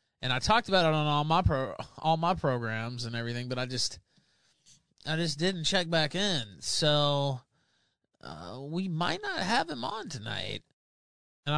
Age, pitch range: 20-39, 120-160 Hz